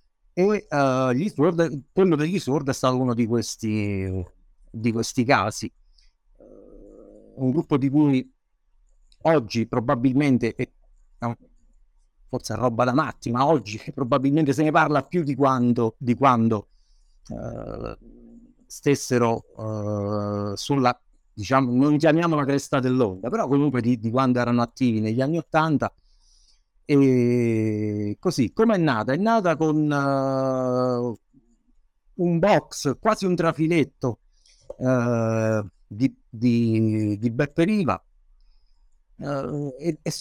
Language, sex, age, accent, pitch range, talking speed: Italian, male, 50-69, native, 110-150 Hz, 95 wpm